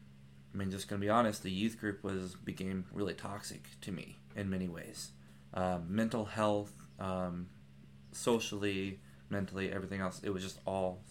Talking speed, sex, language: 165 wpm, male, English